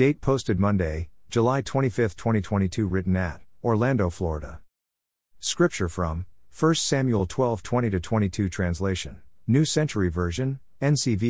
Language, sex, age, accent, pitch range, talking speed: English, male, 50-69, American, 90-120 Hz, 110 wpm